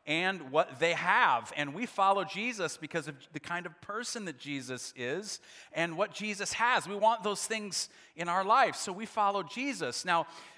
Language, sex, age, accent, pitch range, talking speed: English, male, 40-59, American, 145-200 Hz, 185 wpm